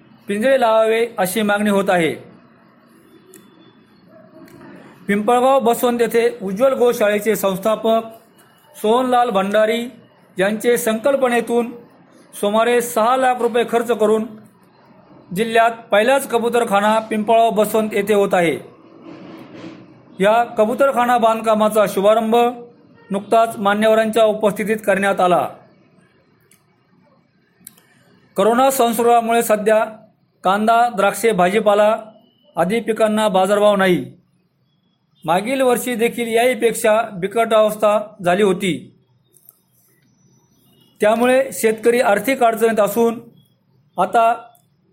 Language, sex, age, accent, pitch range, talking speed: Marathi, male, 40-59, native, 200-235 Hz, 65 wpm